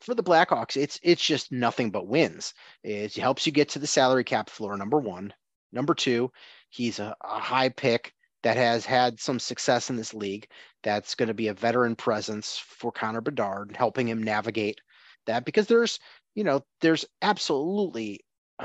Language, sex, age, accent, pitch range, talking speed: English, male, 30-49, American, 110-135 Hz, 175 wpm